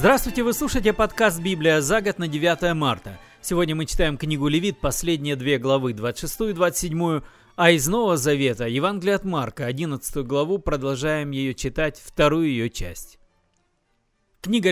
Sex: male